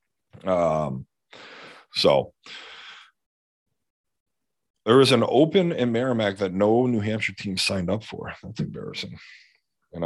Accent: American